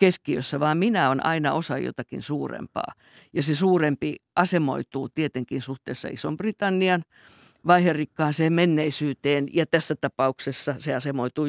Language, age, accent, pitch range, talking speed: Finnish, 50-69, native, 140-185 Hz, 110 wpm